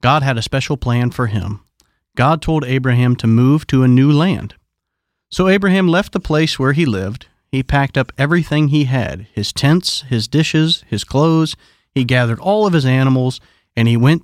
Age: 40-59